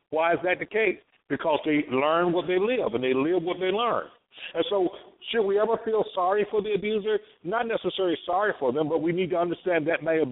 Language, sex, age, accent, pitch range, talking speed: English, male, 60-79, American, 175-235 Hz, 235 wpm